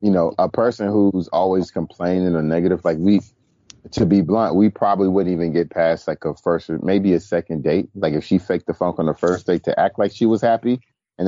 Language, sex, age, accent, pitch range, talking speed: English, male, 30-49, American, 95-130 Hz, 235 wpm